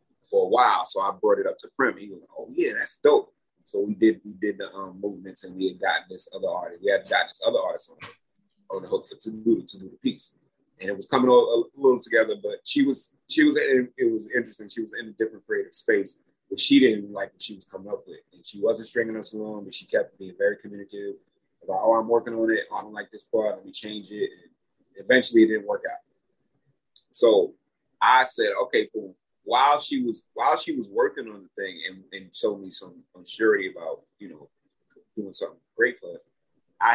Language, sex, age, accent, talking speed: English, male, 30-49, American, 240 wpm